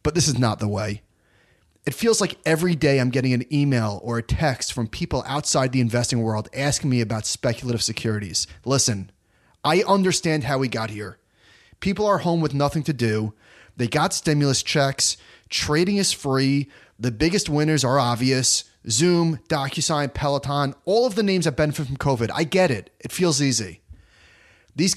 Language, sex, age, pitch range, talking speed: English, male, 30-49, 115-160 Hz, 175 wpm